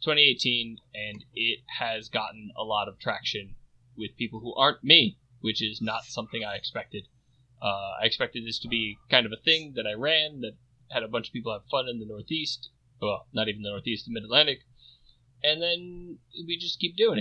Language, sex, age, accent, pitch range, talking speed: English, male, 20-39, American, 110-130 Hz, 200 wpm